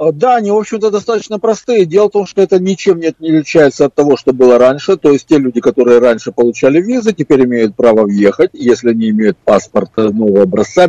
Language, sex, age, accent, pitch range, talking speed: Russian, male, 50-69, native, 120-175 Hz, 205 wpm